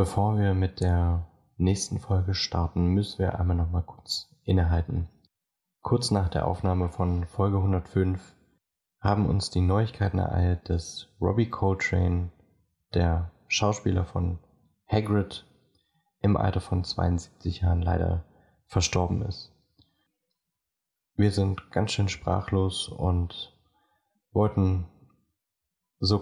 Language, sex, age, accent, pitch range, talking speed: German, male, 20-39, German, 90-100 Hz, 110 wpm